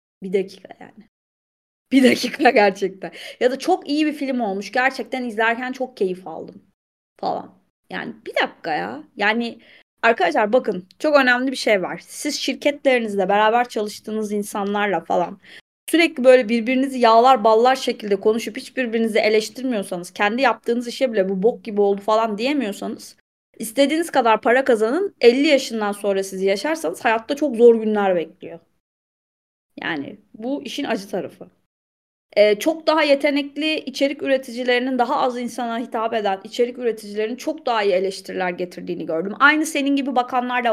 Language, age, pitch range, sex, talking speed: Turkish, 30-49, 205-265 Hz, female, 145 wpm